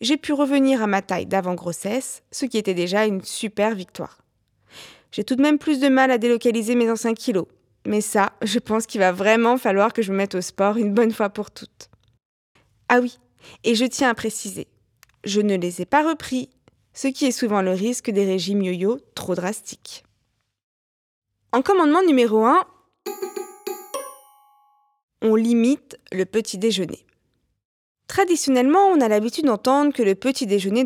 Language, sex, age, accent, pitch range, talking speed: French, female, 20-39, French, 200-270 Hz, 165 wpm